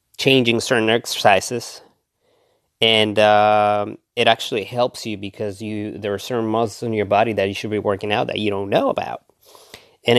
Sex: male